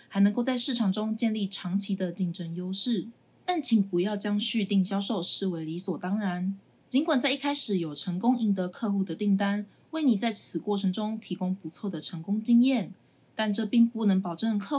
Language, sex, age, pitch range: Chinese, female, 20-39, 185-240 Hz